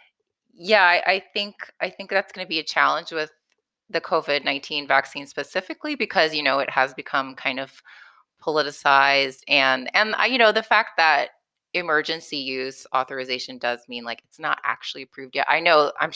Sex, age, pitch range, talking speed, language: female, 20-39, 135-185 Hz, 180 wpm, English